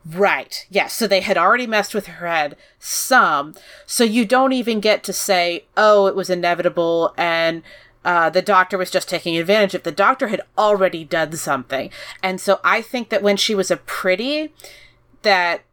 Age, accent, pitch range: 30-49, American, 170-210 Hz